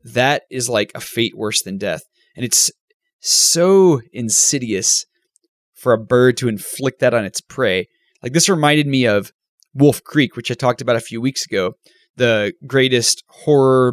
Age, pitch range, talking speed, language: 20-39, 120-155 Hz, 170 wpm, English